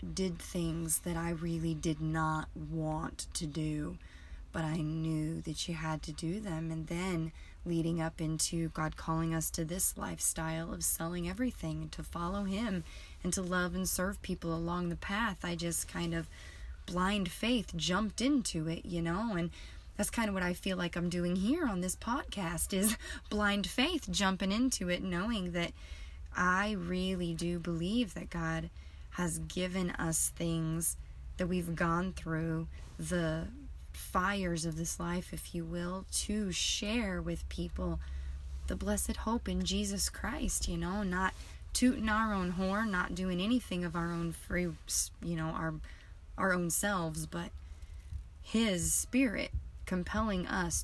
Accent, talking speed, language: American, 160 wpm, English